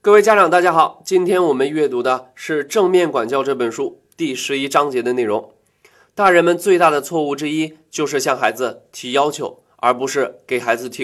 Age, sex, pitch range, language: 20-39, male, 145-205 Hz, Chinese